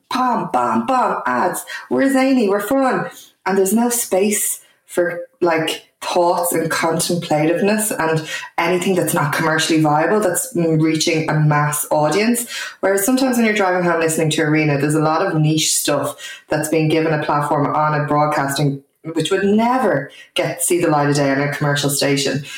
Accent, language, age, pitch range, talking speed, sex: Irish, English, 20-39, 140-175 Hz, 175 wpm, female